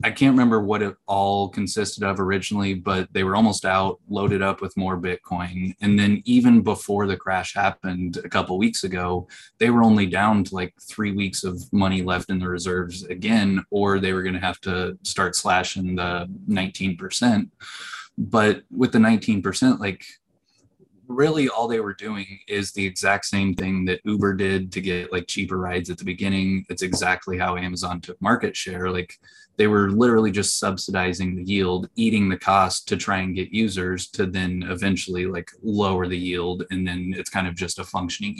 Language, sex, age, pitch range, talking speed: English, male, 20-39, 90-100 Hz, 190 wpm